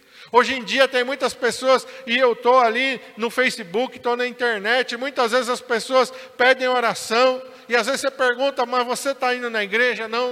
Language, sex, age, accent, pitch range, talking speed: Portuguese, male, 50-69, Brazilian, 245-280 Hz, 190 wpm